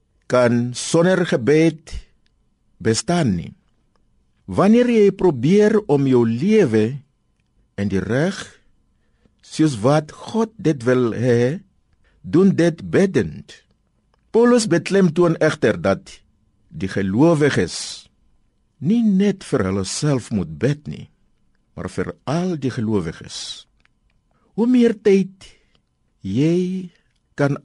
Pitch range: 120-190 Hz